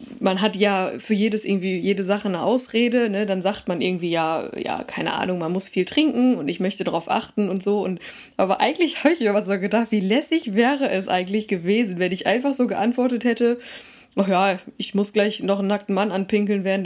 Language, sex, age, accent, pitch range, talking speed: German, female, 20-39, German, 185-240 Hz, 220 wpm